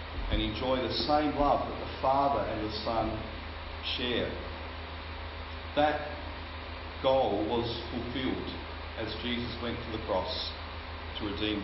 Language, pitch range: English, 80-120 Hz